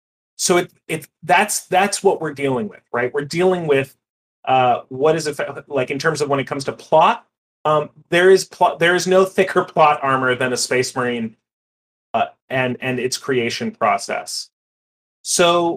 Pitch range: 130-170 Hz